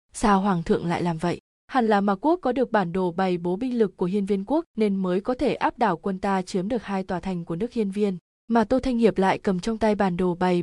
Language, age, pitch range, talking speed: Vietnamese, 20-39, 190-230 Hz, 280 wpm